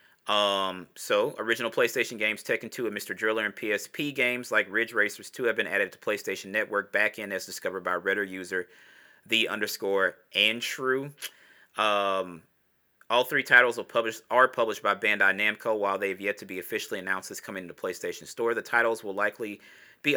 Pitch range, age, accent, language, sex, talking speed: 100-140 Hz, 30-49, American, English, male, 185 wpm